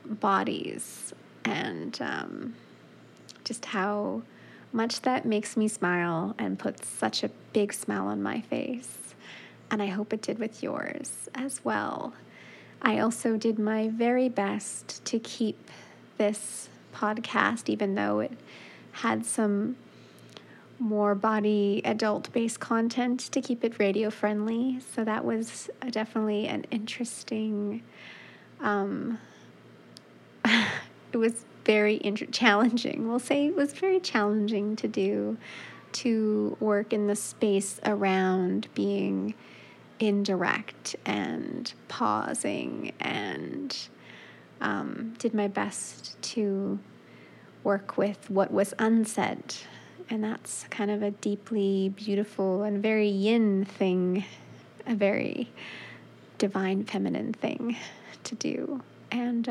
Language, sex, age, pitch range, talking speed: English, female, 20-39, 195-230 Hz, 110 wpm